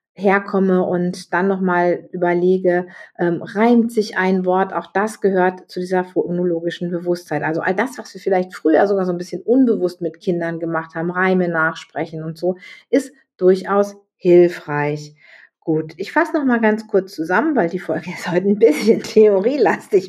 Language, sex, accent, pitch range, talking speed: German, female, German, 170-210 Hz, 165 wpm